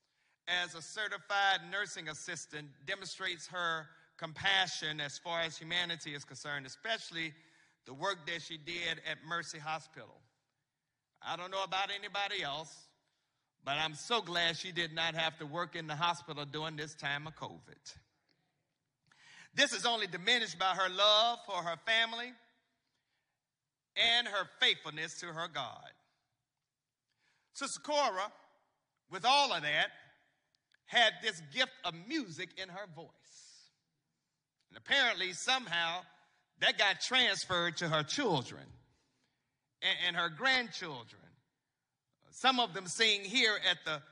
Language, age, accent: English, 50-69, American